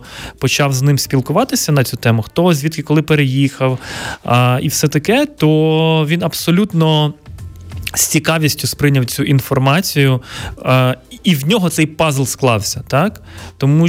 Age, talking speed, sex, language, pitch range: 20-39, 140 wpm, male, Ukrainian, 130-160 Hz